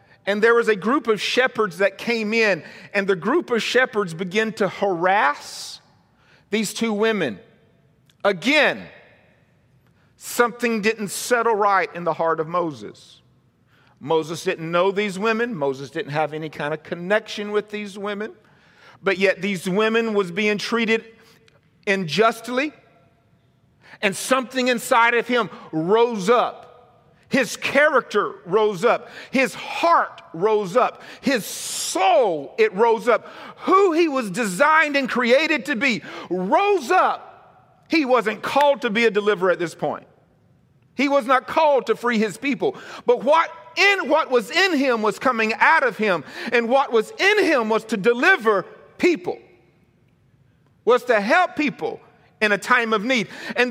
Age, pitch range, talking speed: 50-69, 200-275 Hz, 150 wpm